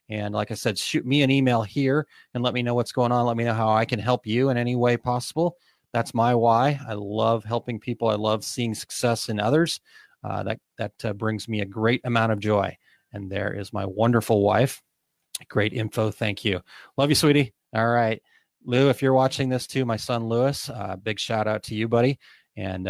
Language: English